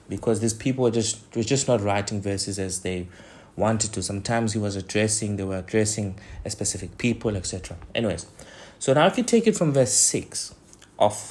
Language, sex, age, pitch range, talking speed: English, male, 30-49, 105-145 Hz, 190 wpm